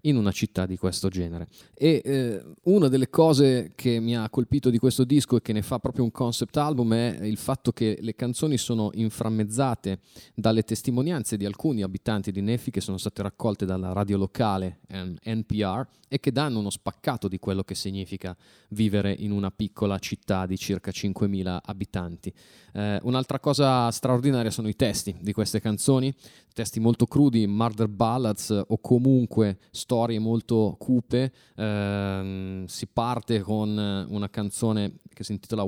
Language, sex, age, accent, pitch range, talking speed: Italian, male, 30-49, native, 100-125 Hz, 160 wpm